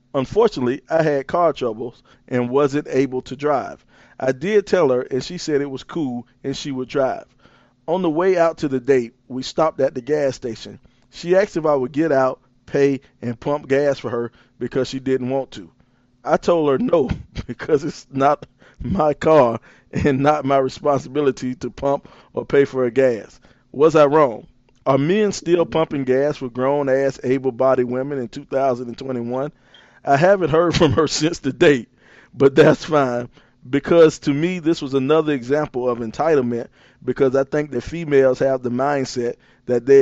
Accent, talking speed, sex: American, 180 wpm, male